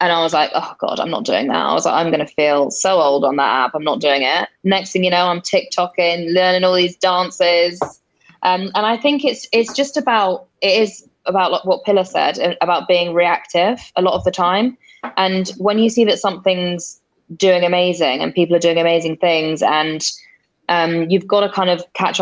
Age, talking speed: 10-29, 220 wpm